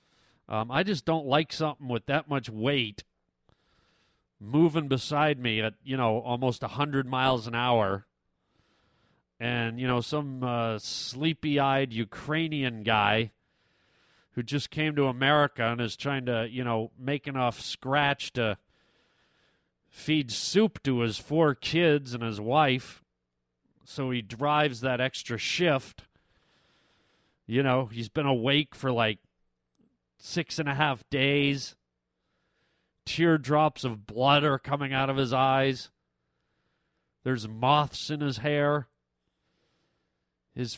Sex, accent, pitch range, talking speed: male, American, 110-145 Hz, 130 wpm